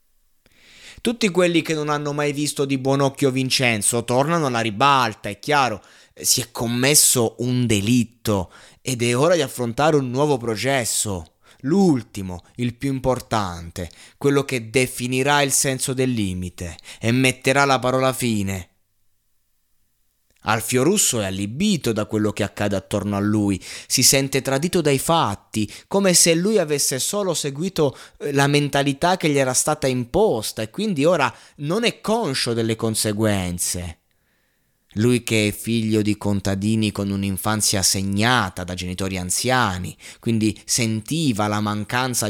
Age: 20-39